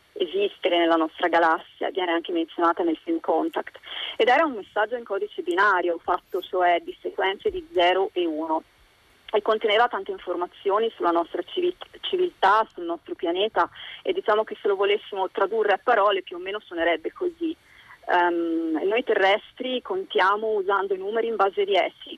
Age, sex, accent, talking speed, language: 30-49, female, native, 160 wpm, Italian